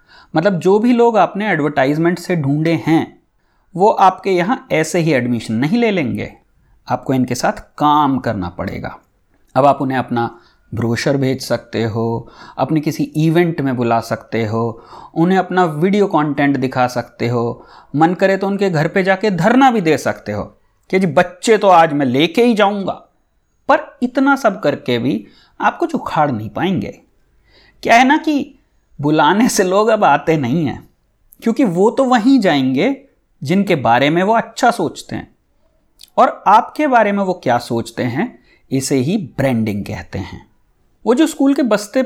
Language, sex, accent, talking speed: English, male, Indian, 135 wpm